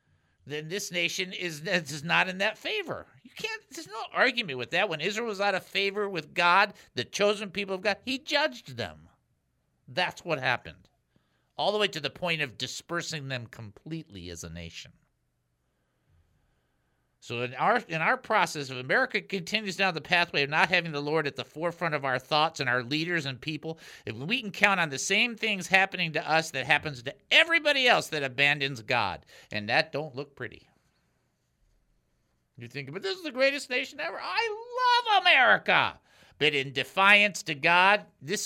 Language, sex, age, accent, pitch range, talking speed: English, male, 50-69, American, 120-190 Hz, 185 wpm